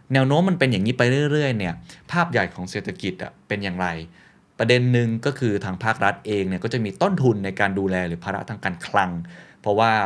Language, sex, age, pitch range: Thai, male, 20-39, 95-125 Hz